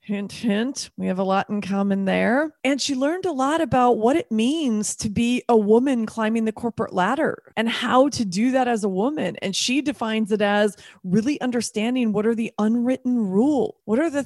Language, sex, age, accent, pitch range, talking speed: English, female, 30-49, American, 205-250 Hz, 205 wpm